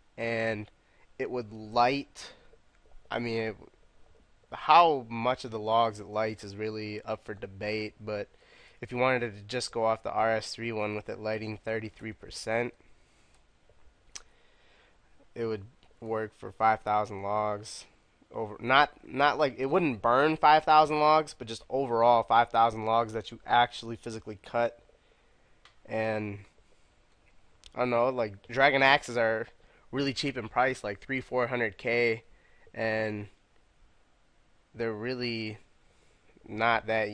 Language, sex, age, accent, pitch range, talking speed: English, male, 20-39, American, 105-120 Hz, 135 wpm